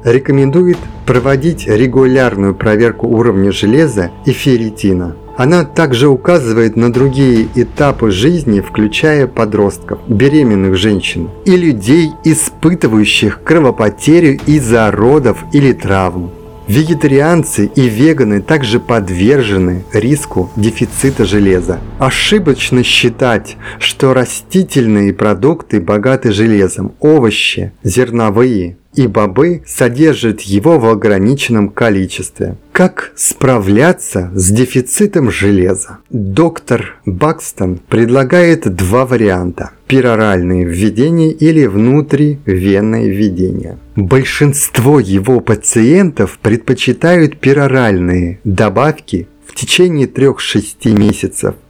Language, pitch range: Russian, 100-140 Hz